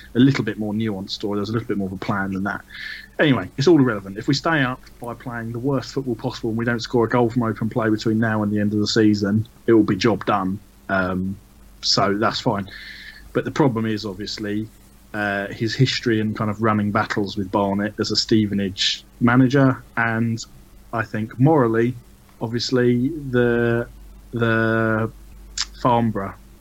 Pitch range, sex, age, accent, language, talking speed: 100-115 Hz, male, 20-39, British, English, 185 wpm